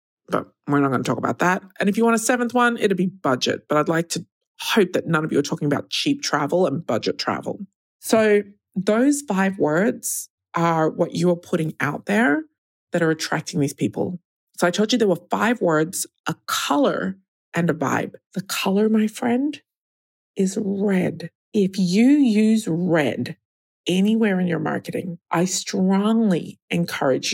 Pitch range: 170-220 Hz